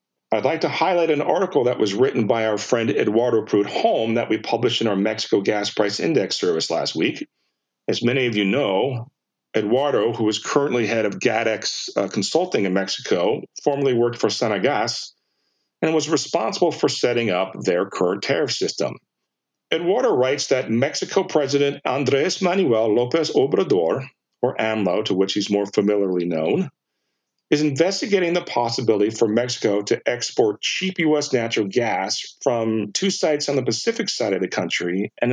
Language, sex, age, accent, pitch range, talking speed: English, male, 50-69, American, 105-150 Hz, 165 wpm